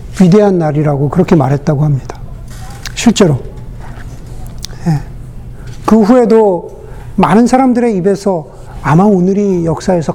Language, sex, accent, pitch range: Korean, male, native, 150-230 Hz